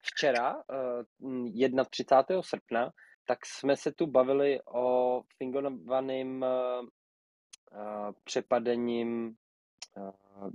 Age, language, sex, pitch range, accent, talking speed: 20-39, Czech, male, 110-130 Hz, native, 80 wpm